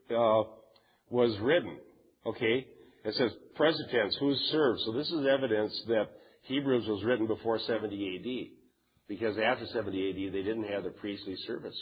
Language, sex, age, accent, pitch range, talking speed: English, male, 50-69, American, 105-130 Hz, 155 wpm